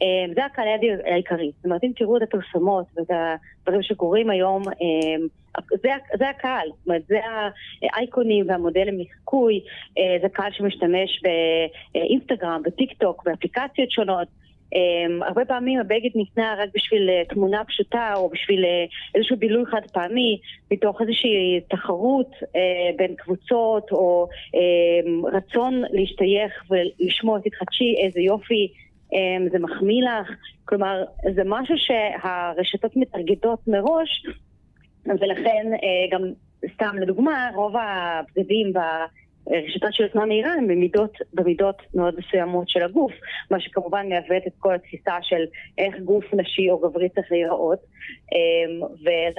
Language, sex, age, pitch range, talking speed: Hebrew, female, 30-49, 175-220 Hz, 115 wpm